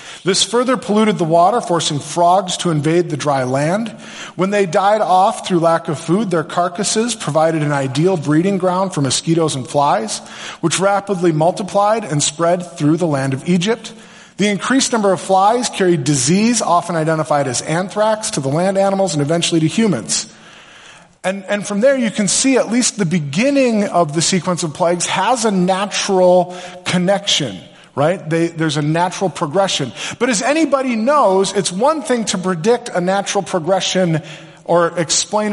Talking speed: 165 wpm